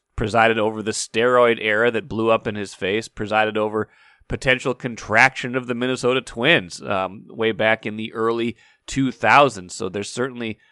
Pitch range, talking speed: 105-125 Hz, 160 wpm